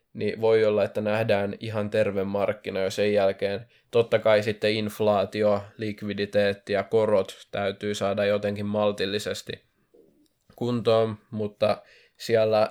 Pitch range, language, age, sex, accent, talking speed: 105-115 Hz, Finnish, 20-39, male, native, 115 wpm